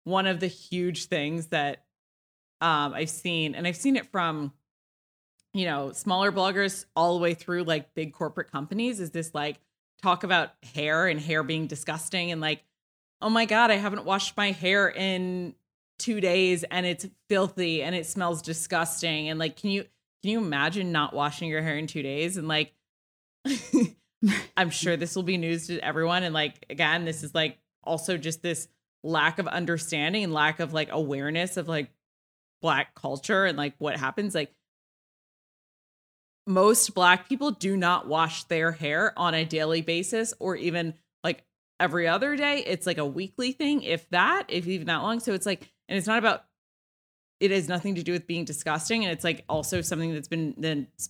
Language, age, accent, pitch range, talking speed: English, 20-39, American, 155-190 Hz, 185 wpm